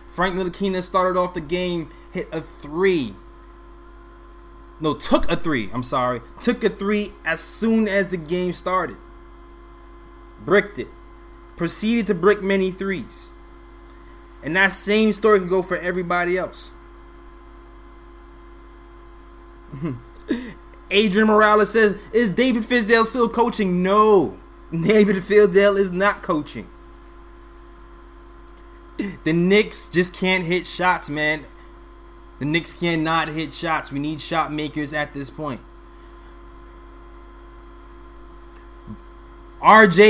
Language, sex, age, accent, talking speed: English, male, 20-39, American, 110 wpm